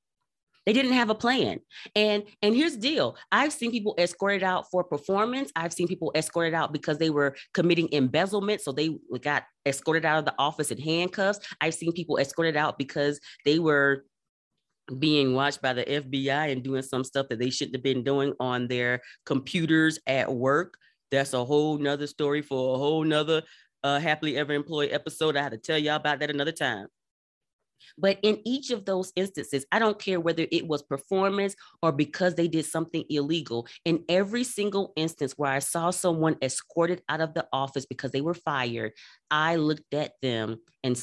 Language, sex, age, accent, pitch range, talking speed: English, female, 30-49, American, 135-175 Hz, 190 wpm